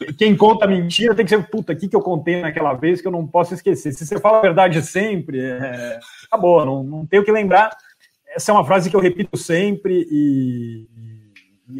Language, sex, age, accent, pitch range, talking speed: Portuguese, male, 40-59, Brazilian, 140-195 Hz, 215 wpm